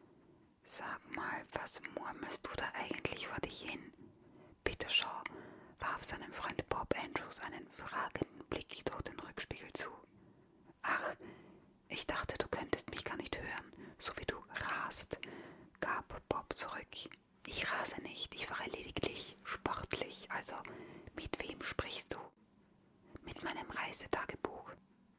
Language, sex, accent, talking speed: German, female, German, 130 wpm